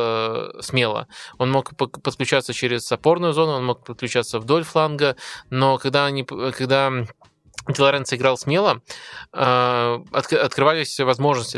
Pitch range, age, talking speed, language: 120-135 Hz, 20-39, 105 wpm, Russian